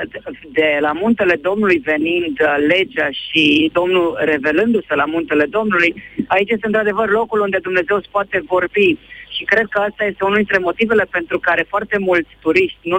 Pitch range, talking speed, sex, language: 160-195 Hz, 155 wpm, female, Romanian